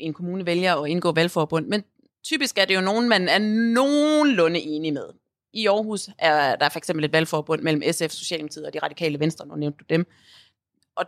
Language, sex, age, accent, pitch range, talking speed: Danish, female, 30-49, native, 160-205 Hz, 195 wpm